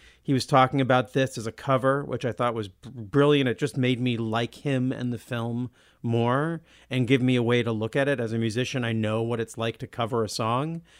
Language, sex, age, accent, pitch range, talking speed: English, male, 40-59, American, 115-140 Hz, 245 wpm